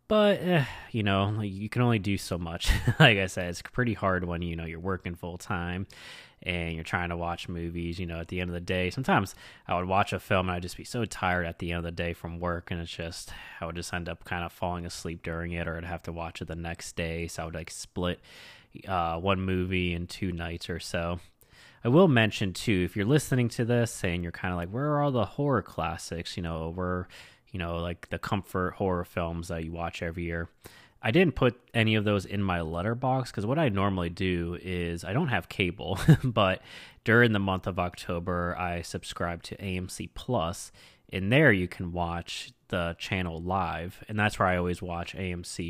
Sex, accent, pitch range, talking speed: male, American, 85-105 Hz, 225 wpm